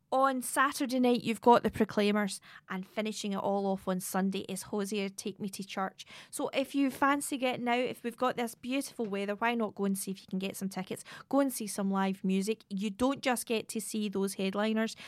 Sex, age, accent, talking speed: female, 20-39, British, 225 wpm